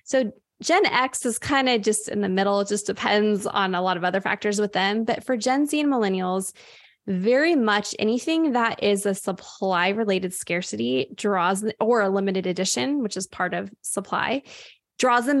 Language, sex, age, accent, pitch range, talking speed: English, female, 20-39, American, 195-240 Hz, 185 wpm